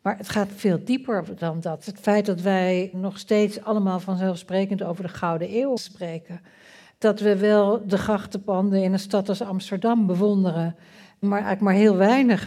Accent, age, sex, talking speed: Dutch, 60-79, female, 175 wpm